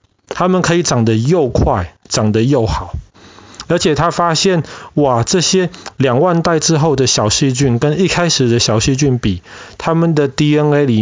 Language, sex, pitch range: Chinese, male, 110-160 Hz